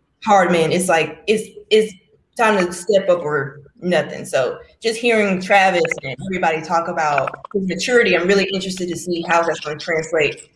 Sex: female